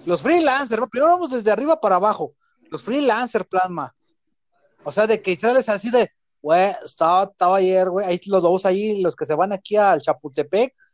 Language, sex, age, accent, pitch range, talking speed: Spanish, male, 30-49, Mexican, 170-280 Hz, 190 wpm